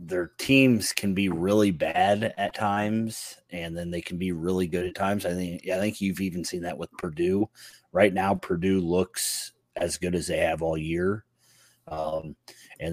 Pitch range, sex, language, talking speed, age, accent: 90-110 Hz, male, English, 185 wpm, 30-49, American